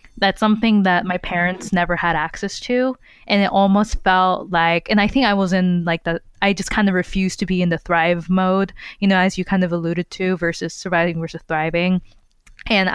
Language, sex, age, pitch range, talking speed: English, female, 20-39, 180-205 Hz, 215 wpm